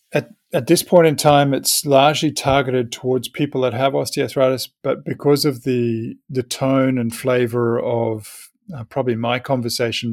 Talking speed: 160 wpm